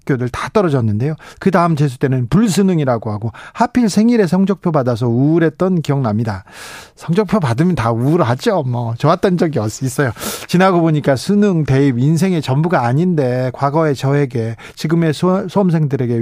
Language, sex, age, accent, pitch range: Korean, male, 40-59, native, 130-180 Hz